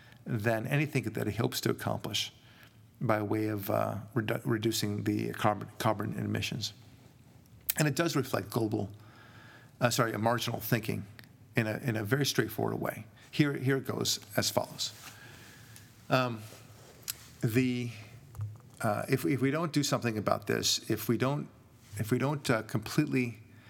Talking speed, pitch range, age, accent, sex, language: 150 wpm, 110-130 Hz, 50-69, American, male, English